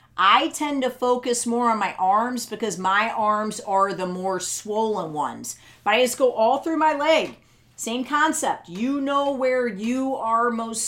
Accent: American